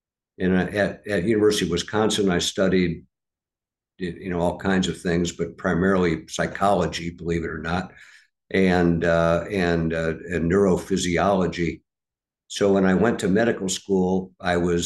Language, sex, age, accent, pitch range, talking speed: English, male, 60-79, American, 85-95 Hz, 145 wpm